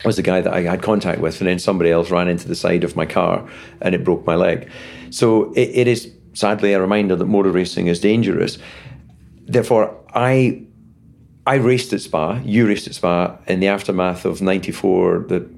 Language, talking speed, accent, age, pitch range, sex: English, 200 wpm, British, 40-59, 90-110 Hz, male